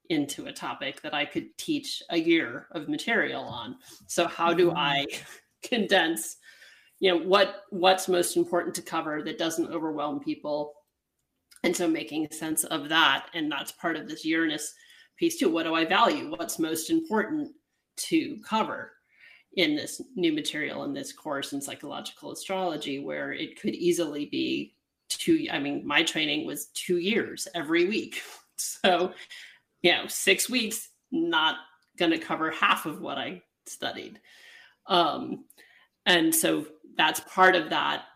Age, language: 30-49, English